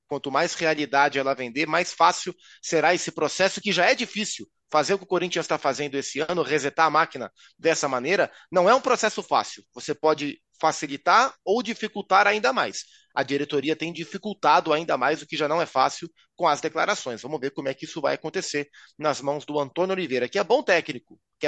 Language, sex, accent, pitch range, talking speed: Portuguese, male, Brazilian, 130-170 Hz, 205 wpm